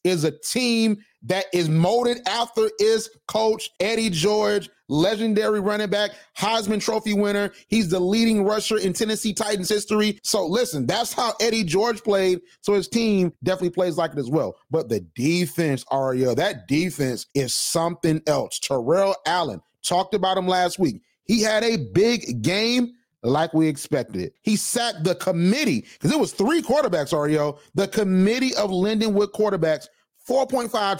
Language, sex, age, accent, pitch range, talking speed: English, male, 30-49, American, 175-225 Hz, 160 wpm